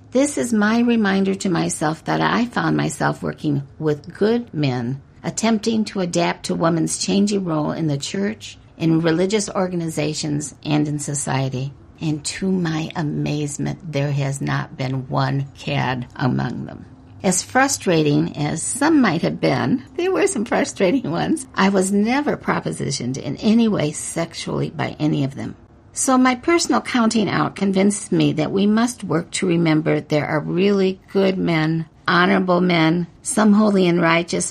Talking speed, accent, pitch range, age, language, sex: 155 wpm, American, 150-205 Hz, 50-69, English, female